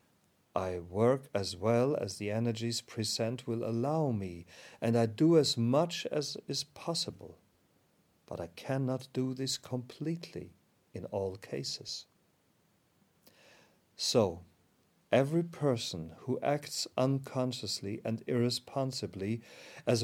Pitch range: 105-135 Hz